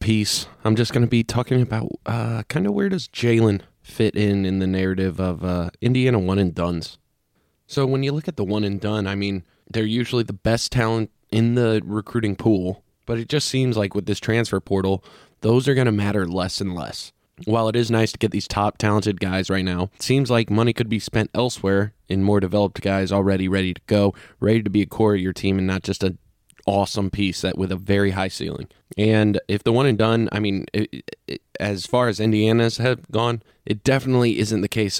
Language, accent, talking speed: English, American, 225 wpm